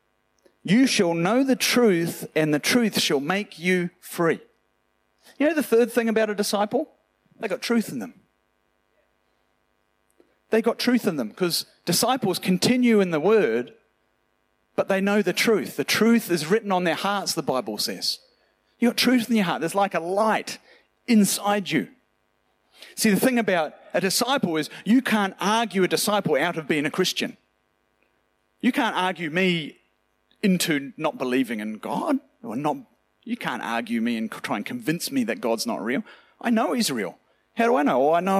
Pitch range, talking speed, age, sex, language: 185-250 Hz, 180 wpm, 40-59, male, English